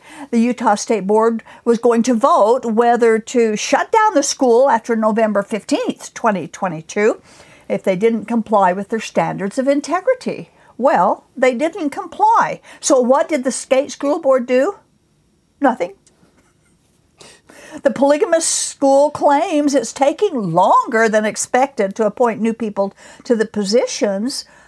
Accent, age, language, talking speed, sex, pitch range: American, 60-79, English, 135 wpm, female, 210-285 Hz